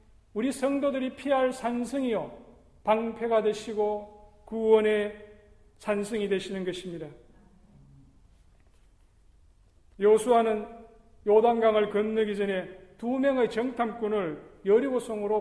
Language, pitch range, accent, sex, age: Korean, 195-240 Hz, native, male, 40-59